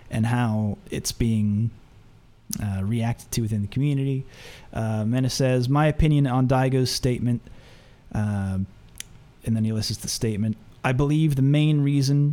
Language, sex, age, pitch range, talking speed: English, male, 30-49, 110-145 Hz, 145 wpm